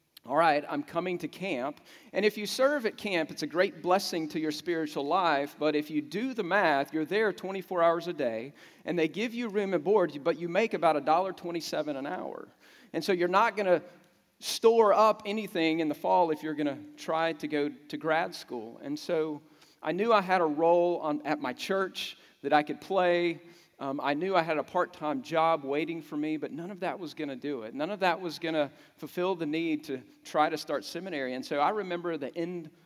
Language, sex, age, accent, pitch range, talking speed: English, male, 40-59, American, 150-180 Hz, 230 wpm